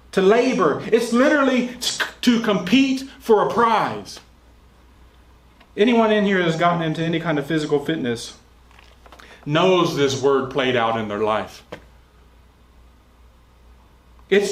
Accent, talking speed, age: American, 120 wpm, 30-49